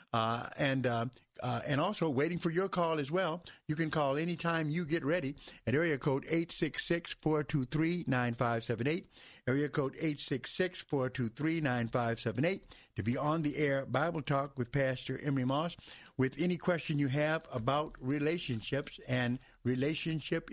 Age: 50-69